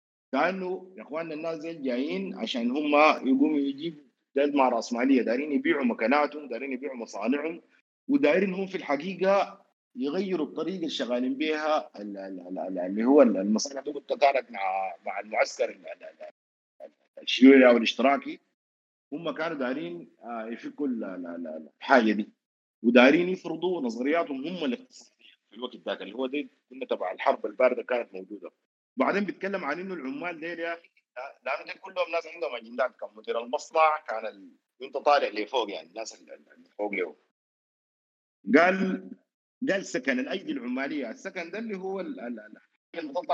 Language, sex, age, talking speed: Arabic, male, 50-69, 135 wpm